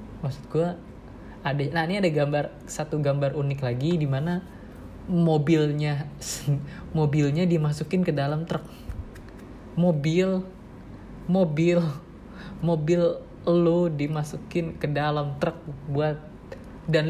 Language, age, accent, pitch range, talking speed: Indonesian, 20-39, native, 135-165 Hz, 100 wpm